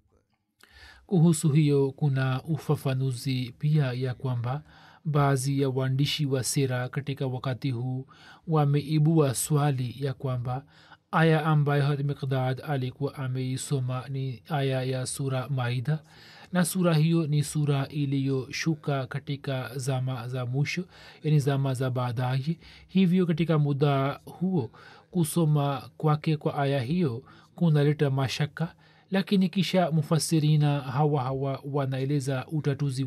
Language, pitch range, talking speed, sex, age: Swahili, 135-155 Hz, 115 wpm, male, 40-59